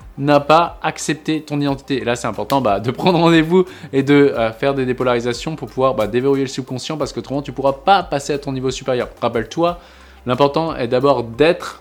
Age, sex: 20-39, male